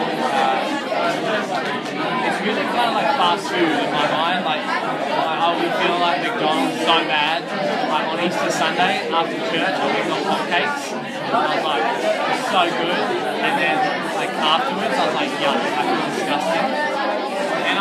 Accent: Australian